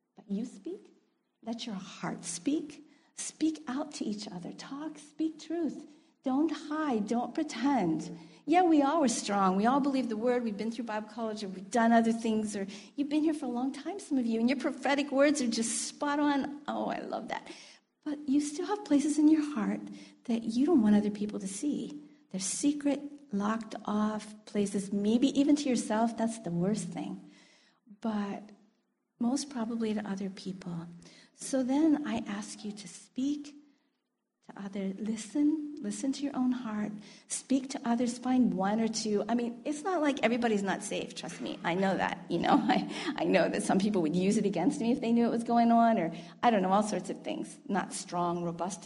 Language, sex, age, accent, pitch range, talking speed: English, female, 50-69, American, 210-285 Hz, 200 wpm